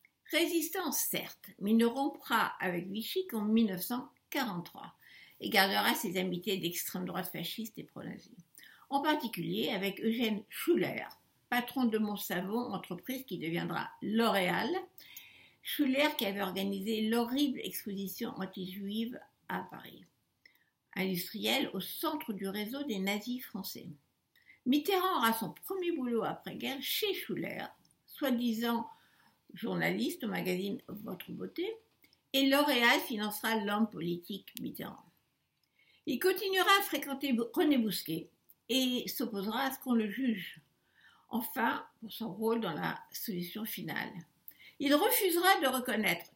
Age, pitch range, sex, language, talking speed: 60-79, 200-275 Hz, female, French, 125 wpm